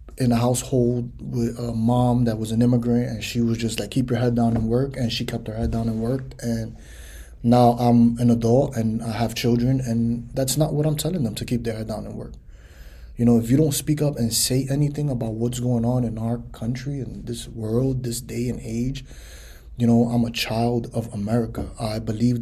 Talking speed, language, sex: 230 wpm, English, male